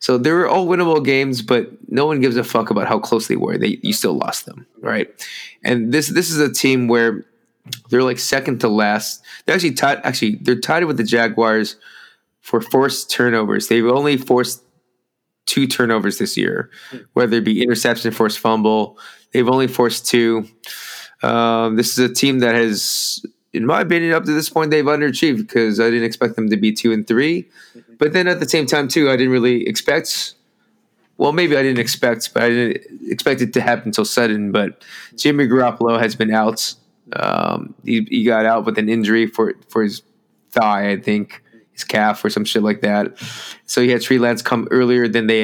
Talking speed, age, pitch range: 200 wpm, 20-39, 110-135 Hz